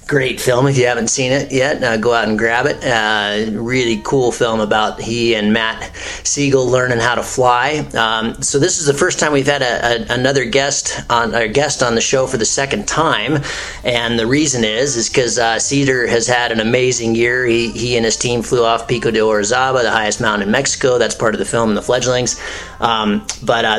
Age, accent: 30-49, American